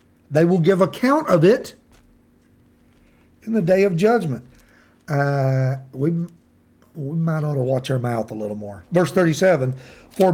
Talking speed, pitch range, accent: 150 wpm, 140-185 Hz, American